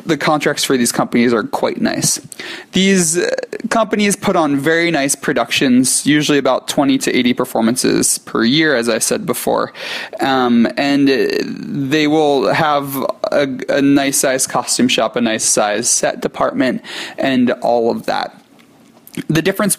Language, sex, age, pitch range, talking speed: English, male, 20-39, 125-180 Hz, 150 wpm